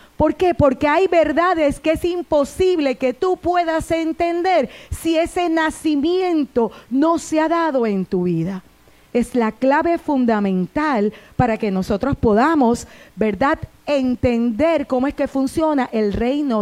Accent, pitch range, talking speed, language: American, 230-315 Hz, 135 wpm, Spanish